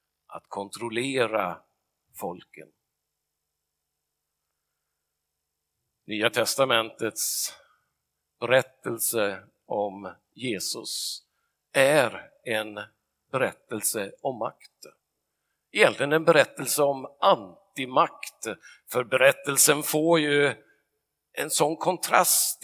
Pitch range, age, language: 100-130 Hz, 50-69, Swedish